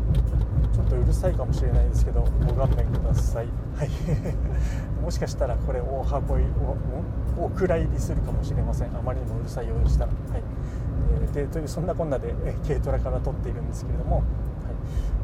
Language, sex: Japanese, male